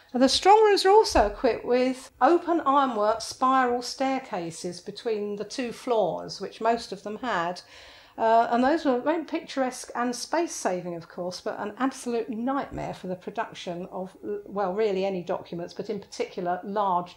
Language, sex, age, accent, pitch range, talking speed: English, female, 50-69, British, 190-265 Hz, 160 wpm